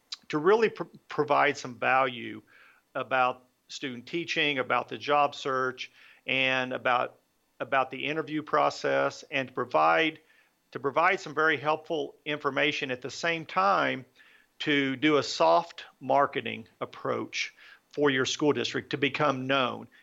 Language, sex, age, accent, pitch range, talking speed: English, male, 50-69, American, 130-155 Hz, 135 wpm